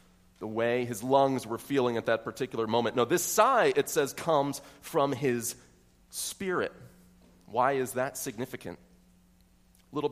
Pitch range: 120-150 Hz